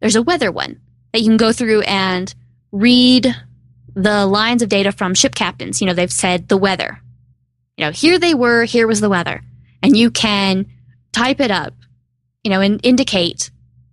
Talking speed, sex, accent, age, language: 185 wpm, female, American, 10-29, English